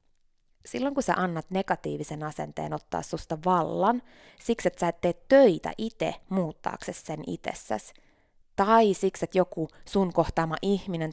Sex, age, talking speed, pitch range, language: female, 20-39, 140 wpm, 155-215 Hz, Finnish